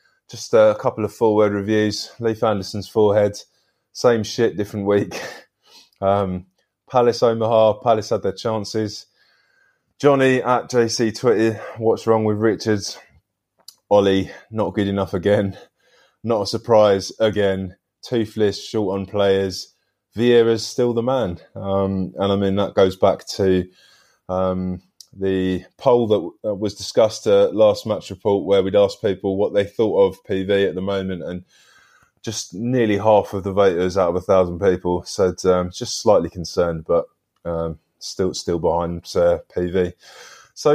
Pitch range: 95-115 Hz